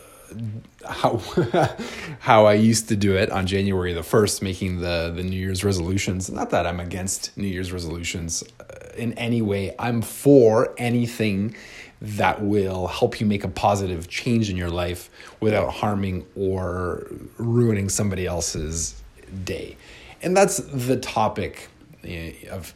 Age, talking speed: 30-49, 140 wpm